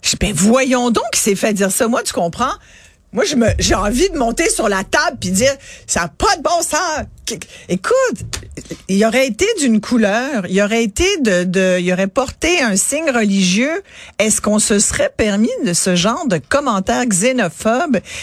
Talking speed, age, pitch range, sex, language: 190 wpm, 50-69, 185-250 Hz, female, French